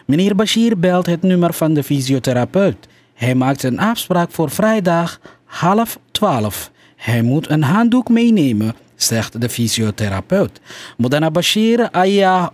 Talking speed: 130 wpm